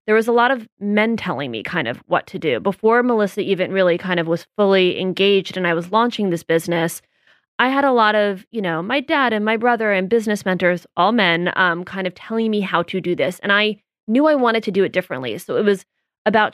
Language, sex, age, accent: English, female, 20-39, American